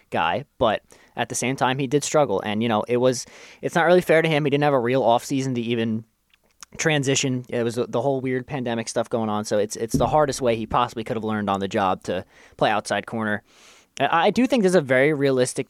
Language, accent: English, American